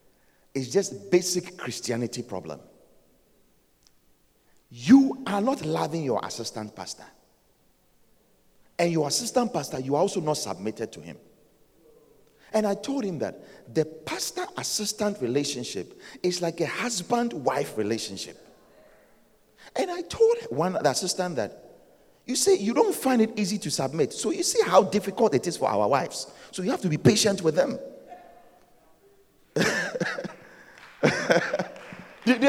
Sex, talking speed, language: male, 130 wpm, English